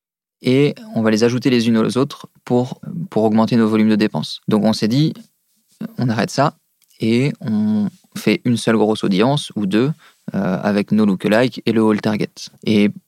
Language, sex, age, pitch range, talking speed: French, male, 20-39, 110-160 Hz, 195 wpm